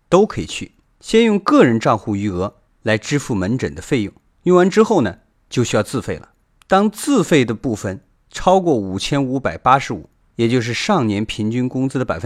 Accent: native